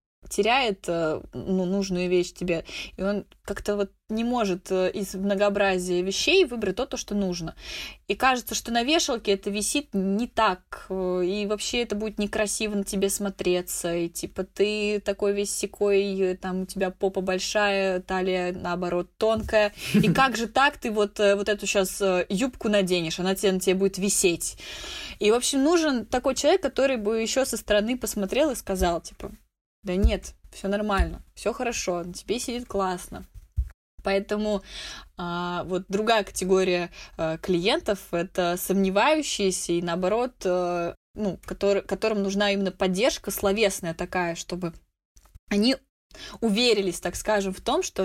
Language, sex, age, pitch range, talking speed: Russian, female, 20-39, 185-220 Hz, 150 wpm